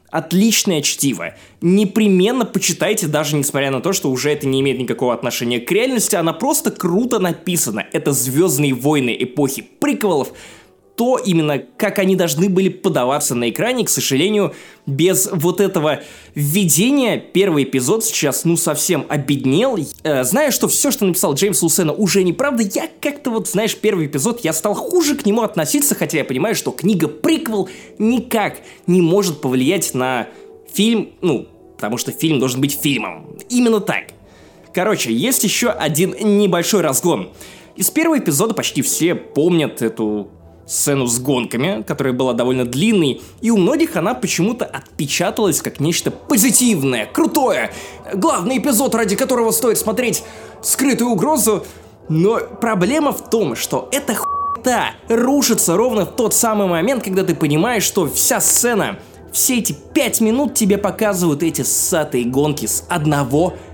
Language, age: Russian, 20-39